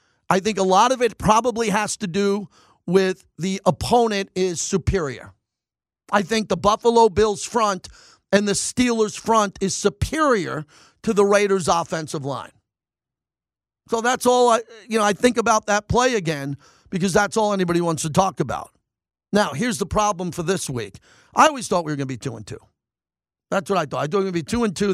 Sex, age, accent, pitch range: male, 40-59, American, 165-205 Hz